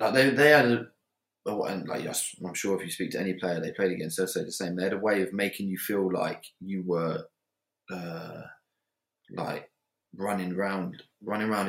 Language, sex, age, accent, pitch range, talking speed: English, male, 20-39, British, 90-110 Hz, 205 wpm